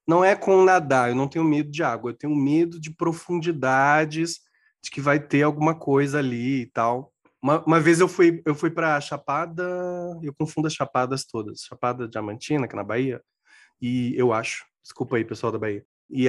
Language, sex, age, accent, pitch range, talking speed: Portuguese, male, 20-39, Brazilian, 130-165 Hz, 195 wpm